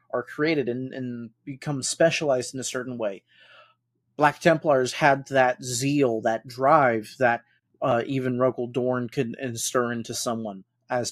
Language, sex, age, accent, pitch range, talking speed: English, male, 30-49, American, 120-135 Hz, 140 wpm